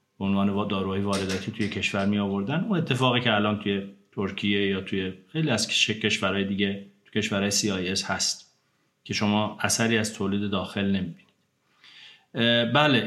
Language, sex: Persian, male